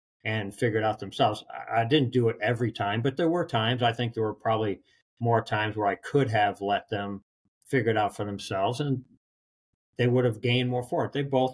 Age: 50-69